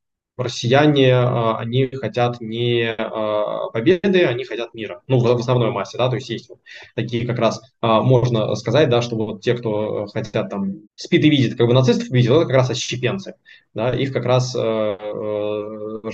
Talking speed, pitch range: 170 wpm, 110-130 Hz